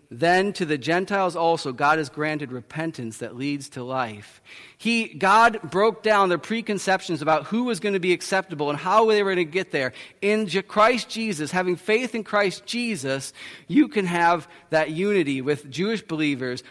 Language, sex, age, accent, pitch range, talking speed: English, male, 40-59, American, 150-200 Hz, 180 wpm